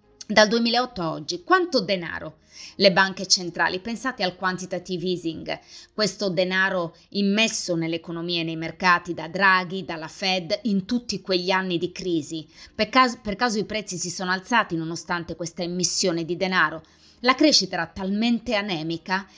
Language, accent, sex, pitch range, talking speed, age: Italian, native, female, 175-235 Hz, 150 wpm, 20-39